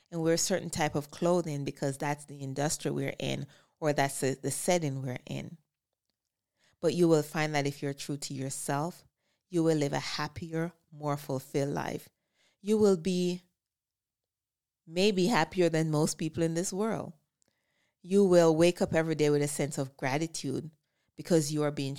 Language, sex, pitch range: English, female, 140-170 Hz